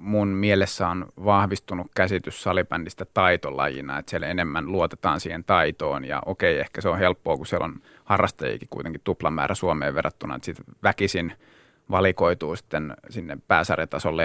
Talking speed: 145 wpm